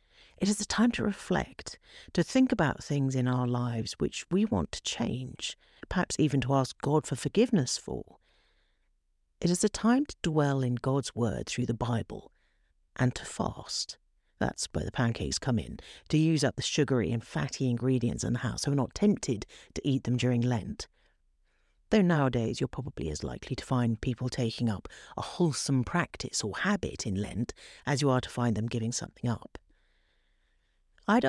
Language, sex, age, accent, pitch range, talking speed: English, female, 50-69, British, 120-175 Hz, 185 wpm